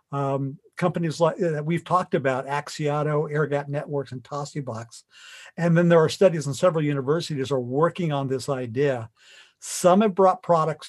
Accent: American